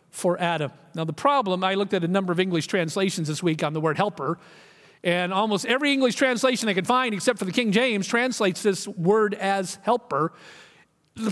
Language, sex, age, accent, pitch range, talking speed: English, male, 50-69, American, 175-235 Hz, 200 wpm